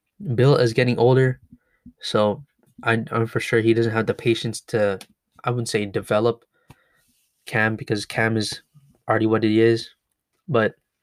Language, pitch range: English, 110-125 Hz